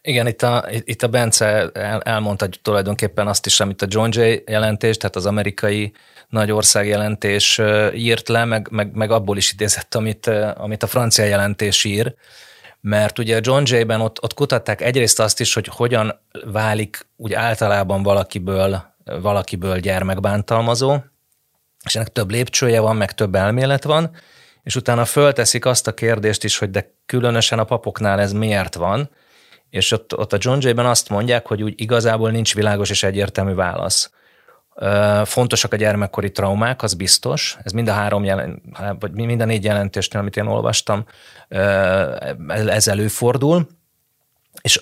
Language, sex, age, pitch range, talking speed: Hungarian, male, 30-49, 100-120 Hz, 155 wpm